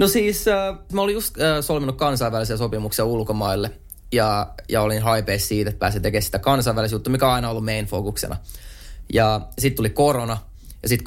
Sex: male